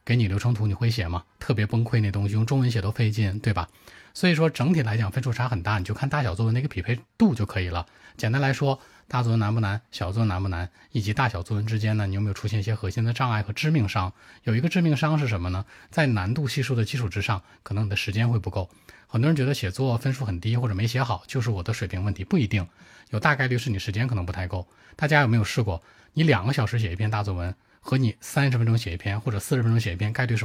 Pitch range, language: 100-125 Hz, Chinese